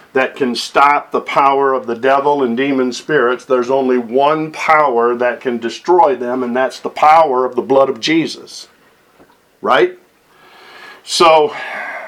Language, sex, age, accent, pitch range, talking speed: English, male, 50-69, American, 130-190 Hz, 150 wpm